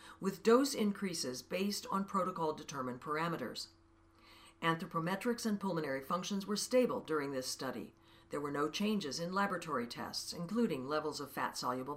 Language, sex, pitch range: English, female, 140-200 Hz